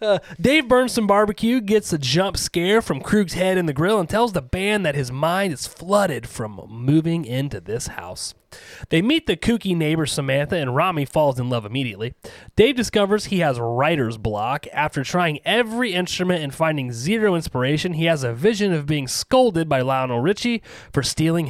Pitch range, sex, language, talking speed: 135-190 Hz, male, English, 185 wpm